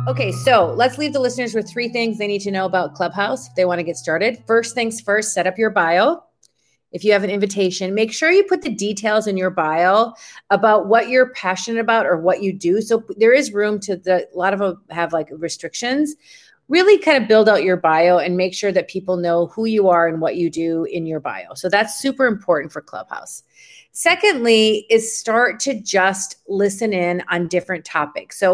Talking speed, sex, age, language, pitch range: 215 wpm, female, 30-49, English, 185-240 Hz